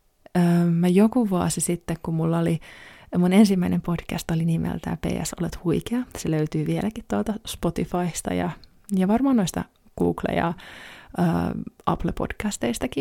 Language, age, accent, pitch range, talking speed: Finnish, 20-39, native, 170-195 Hz, 125 wpm